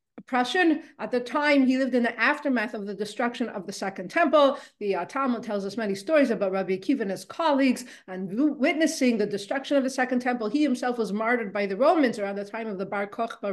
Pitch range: 205-270 Hz